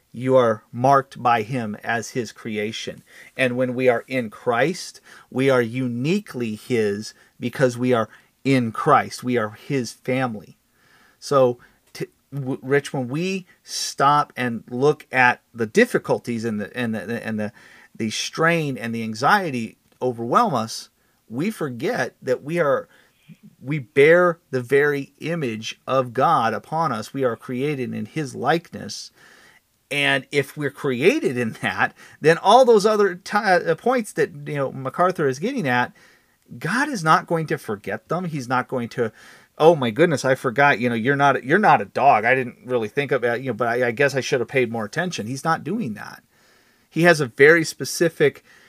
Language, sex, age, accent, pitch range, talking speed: English, male, 40-59, American, 120-160 Hz, 175 wpm